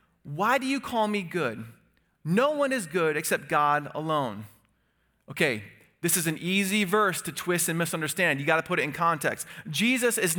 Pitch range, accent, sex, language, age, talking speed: 175-225 Hz, American, male, English, 30-49, 185 wpm